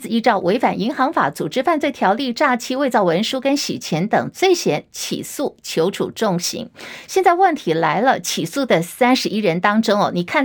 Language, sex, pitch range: Chinese, female, 200-265 Hz